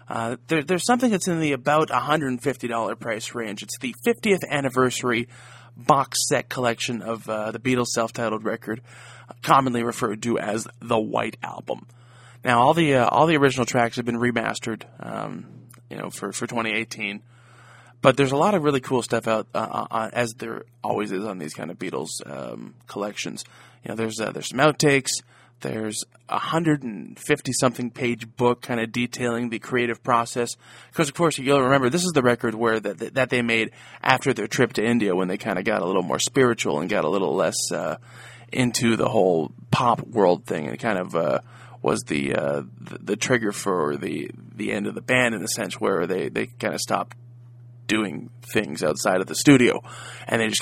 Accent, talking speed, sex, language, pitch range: American, 195 wpm, male, English, 115-135 Hz